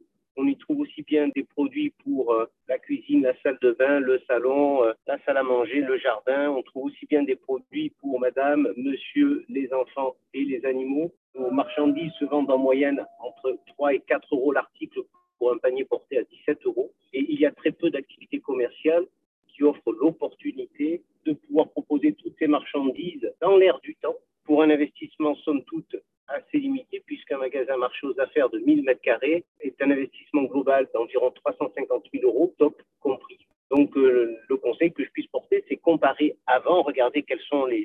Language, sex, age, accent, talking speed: French, male, 50-69, French, 185 wpm